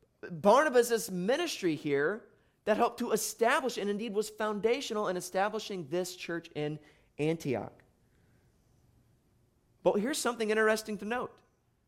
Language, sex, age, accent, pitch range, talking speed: English, male, 30-49, American, 120-200 Hz, 115 wpm